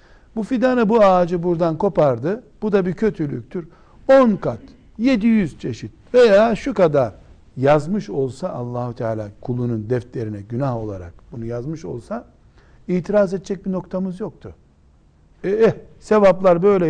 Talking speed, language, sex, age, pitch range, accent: 130 wpm, Turkish, male, 60-79, 120-195 Hz, native